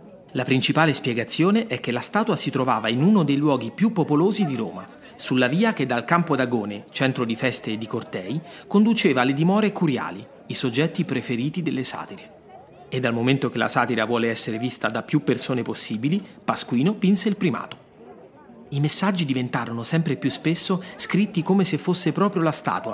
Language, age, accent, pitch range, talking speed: Italian, 30-49, native, 125-180 Hz, 180 wpm